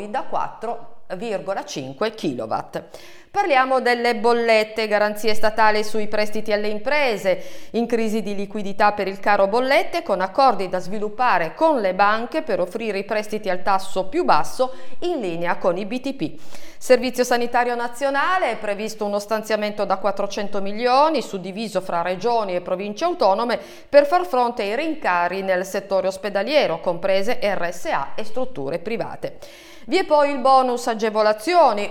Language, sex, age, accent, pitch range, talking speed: Italian, female, 40-59, native, 195-245 Hz, 140 wpm